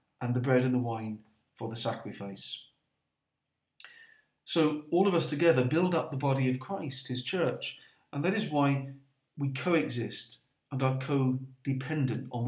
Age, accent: 40-59, British